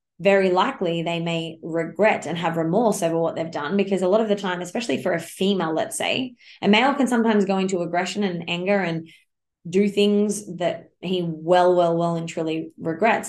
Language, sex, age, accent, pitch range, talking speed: English, female, 20-39, Australian, 170-205 Hz, 200 wpm